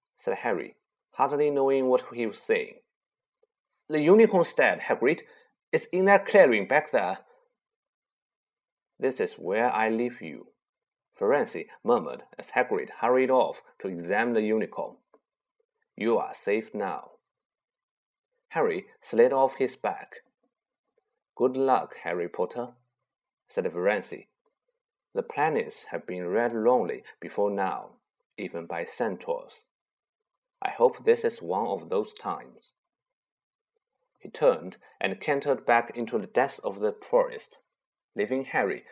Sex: male